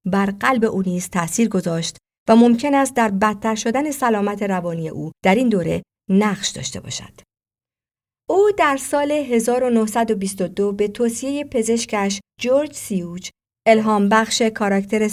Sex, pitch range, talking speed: female, 185-250 Hz, 130 wpm